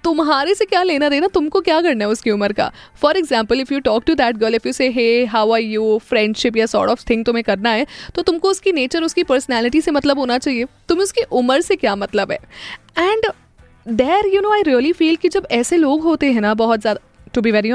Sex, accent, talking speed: female, native, 240 wpm